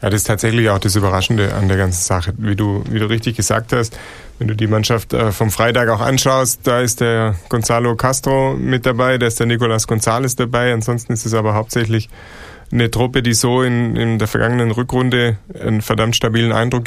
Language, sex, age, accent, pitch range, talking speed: German, male, 30-49, German, 110-125 Hz, 205 wpm